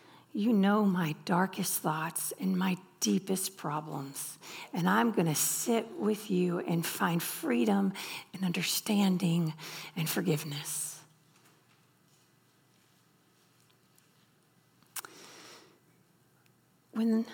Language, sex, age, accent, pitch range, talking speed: English, female, 40-59, American, 175-240 Hz, 85 wpm